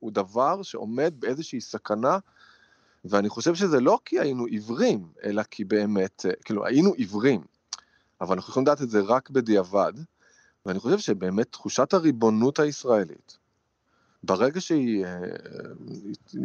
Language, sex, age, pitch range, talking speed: Hebrew, male, 30-49, 110-175 Hz, 125 wpm